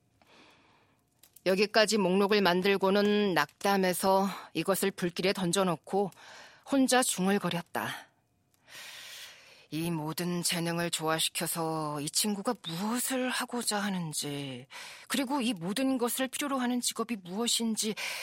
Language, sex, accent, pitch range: Korean, female, native, 175-240 Hz